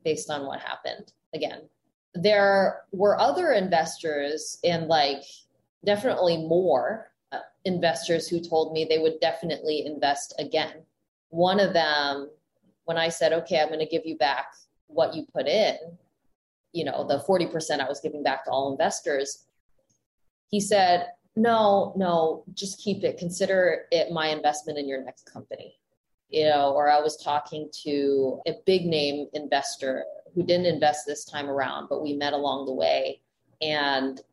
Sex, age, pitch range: female, 20-39, 145-175 Hz